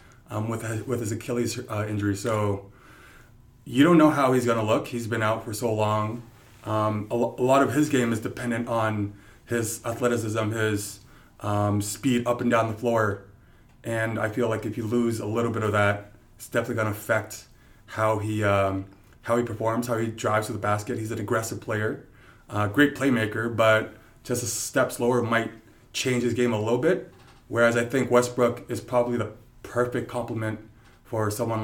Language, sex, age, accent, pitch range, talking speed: English, male, 30-49, American, 110-120 Hz, 195 wpm